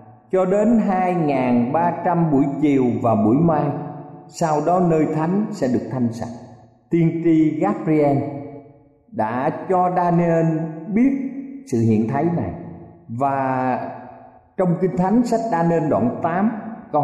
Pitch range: 120-180 Hz